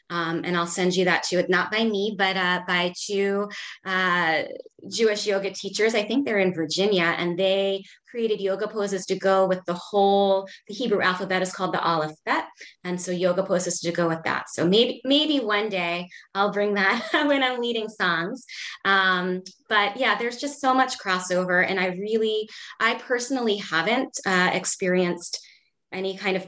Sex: female